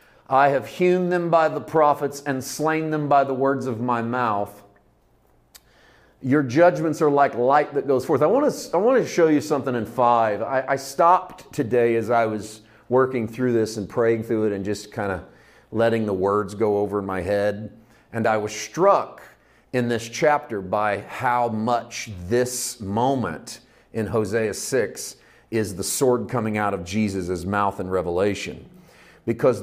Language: English